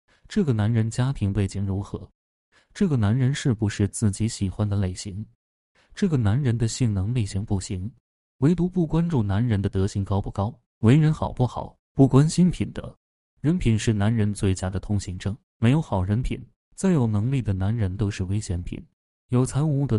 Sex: male